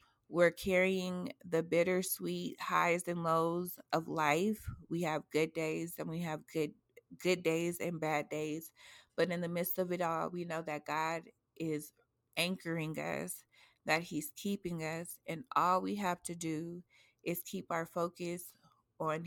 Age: 20-39